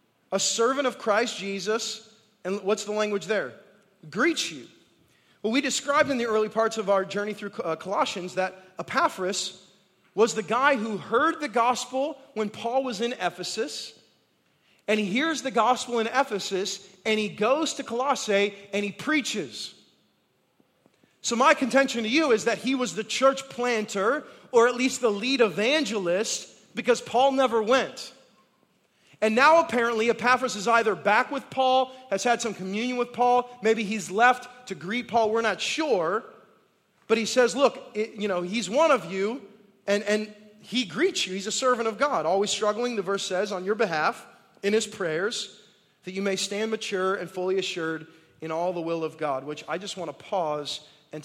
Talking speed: 180 wpm